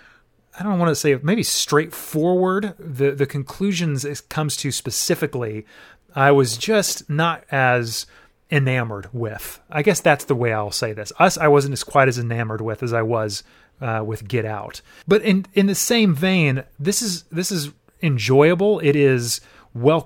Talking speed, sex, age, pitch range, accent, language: 175 wpm, male, 30-49, 125-170 Hz, American, English